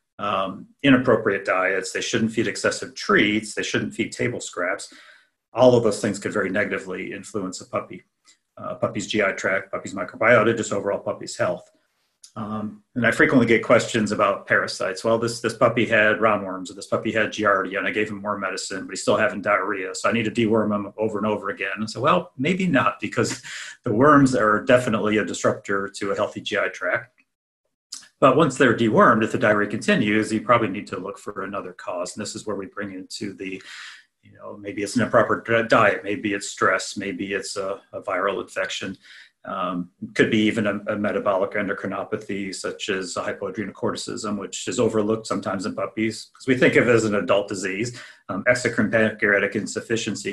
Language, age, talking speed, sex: English, 40-59, 190 wpm, male